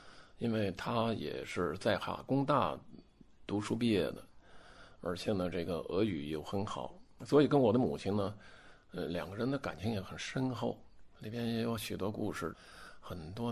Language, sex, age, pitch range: Chinese, male, 50-69, 90-130 Hz